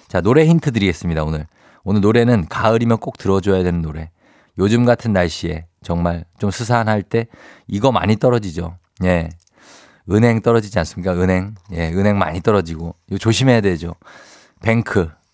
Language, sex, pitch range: Korean, male, 95-150 Hz